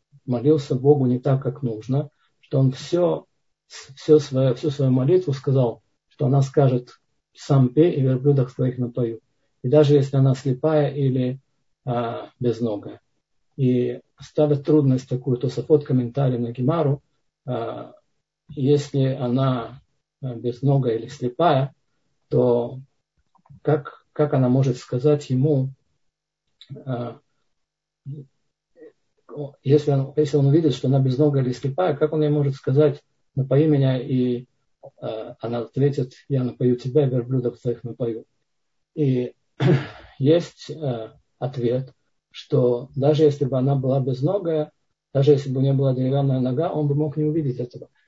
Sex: male